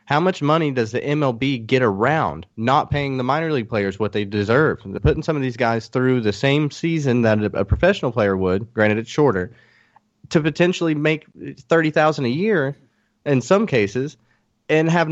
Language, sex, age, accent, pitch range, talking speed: English, male, 30-49, American, 115-155 Hz, 185 wpm